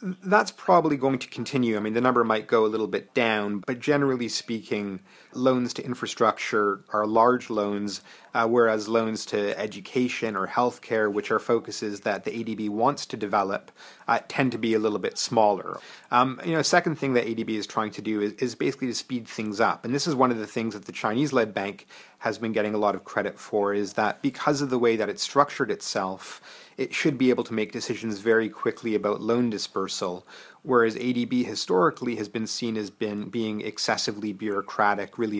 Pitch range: 105-125 Hz